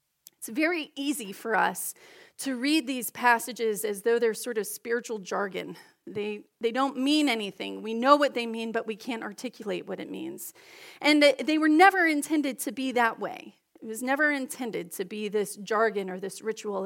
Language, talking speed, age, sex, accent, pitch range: English, 190 wpm, 30-49, female, American, 220-290 Hz